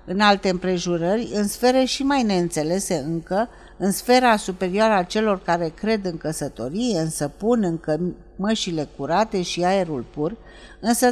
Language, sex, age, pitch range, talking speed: Romanian, female, 50-69, 180-245 Hz, 145 wpm